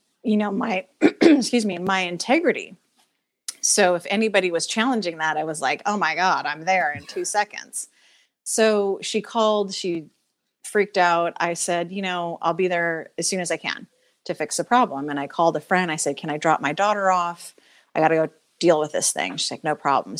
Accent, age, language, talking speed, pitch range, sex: American, 30-49, English, 210 wpm, 170-220 Hz, female